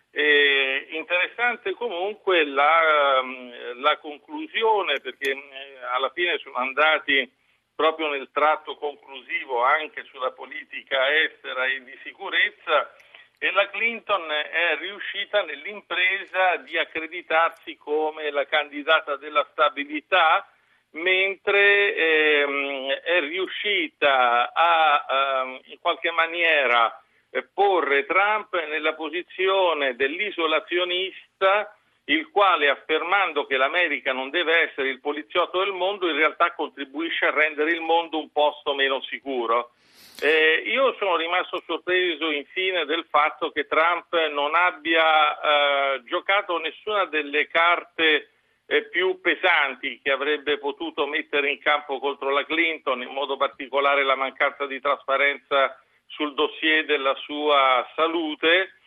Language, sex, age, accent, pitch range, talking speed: Italian, male, 50-69, native, 140-175 Hz, 115 wpm